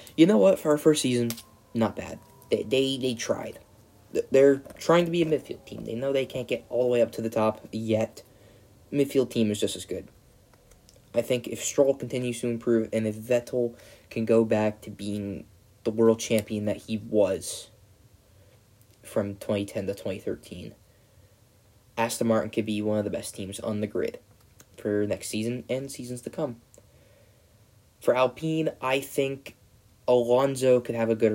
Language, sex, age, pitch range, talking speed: English, male, 20-39, 105-125 Hz, 175 wpm